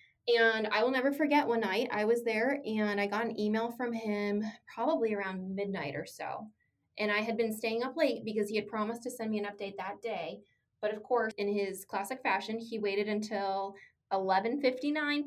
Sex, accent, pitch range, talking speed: female, American, 195-230 Hz, 200 wpm